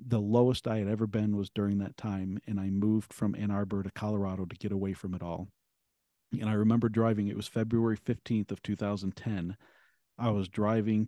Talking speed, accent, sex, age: 200 wpm, American, male, 40-59